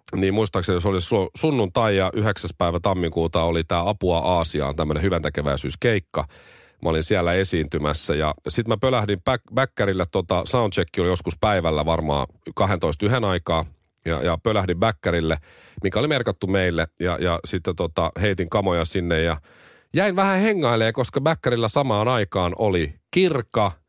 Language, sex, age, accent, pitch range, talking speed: Finnish, male, 40-59, native, 85-110 Hz, 145 wpm